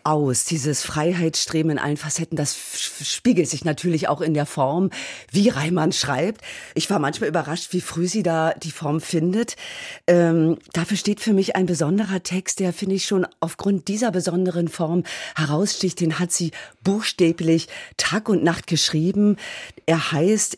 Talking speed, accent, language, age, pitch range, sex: 160 wpm, German, German, 40-59, 155-195 Hz, female